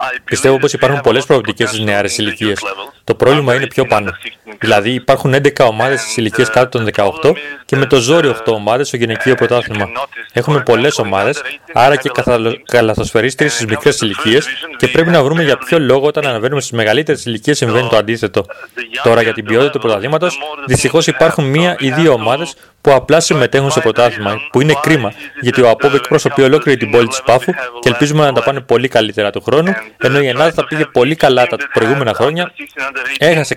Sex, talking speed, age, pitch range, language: male, 185 wpm, 30-49, 115-150 Hz, Greek